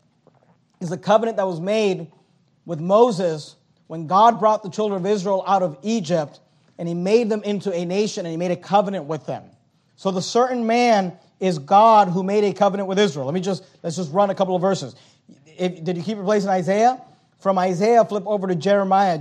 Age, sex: 30-49, male